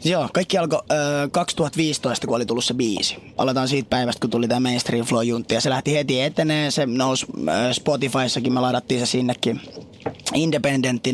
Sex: male